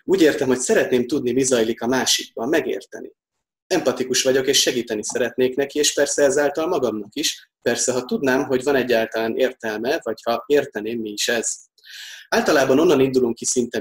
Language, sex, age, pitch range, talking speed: Hungarian, male, 30-49, 120-180 Hz, 170 wpm